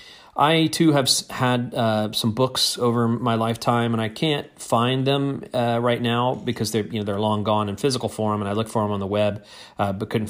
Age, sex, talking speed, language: 40-59, male, 225 wpm, English